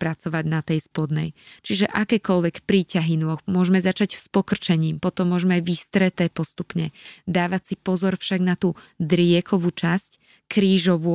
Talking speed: 135 wpm